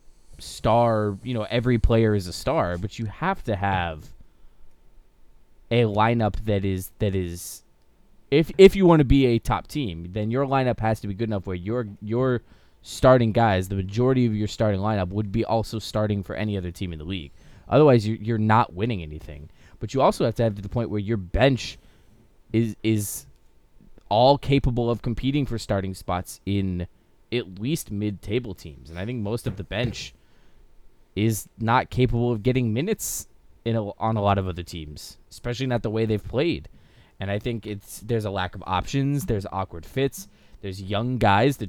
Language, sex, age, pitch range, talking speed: English, male, 20-39, 95-120 Hz, 195 wpm